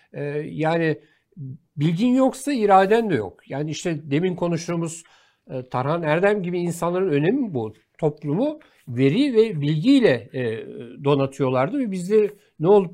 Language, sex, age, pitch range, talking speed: Turkish, male, 60-79, 150-215 Hz, 120 wpm